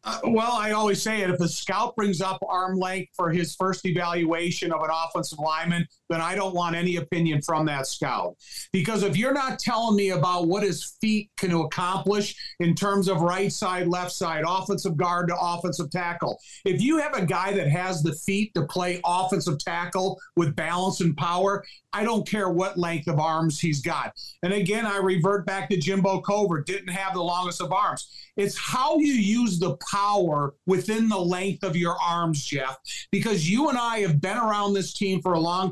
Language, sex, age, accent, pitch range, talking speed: English, male, 50-69, American, 175-205 Hz, 200 wpm